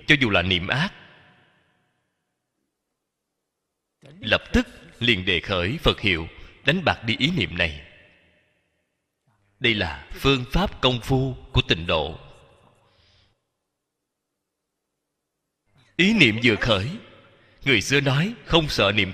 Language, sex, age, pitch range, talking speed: Vietnamese, male, 30-49, 100-150 Hz, 115 wpm